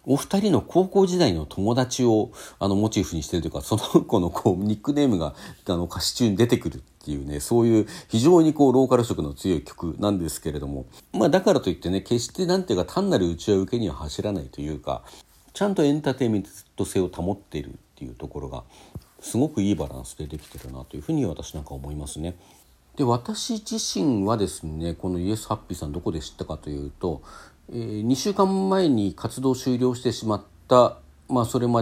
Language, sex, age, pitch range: Japanese, male, 50-69, 80-120 Hz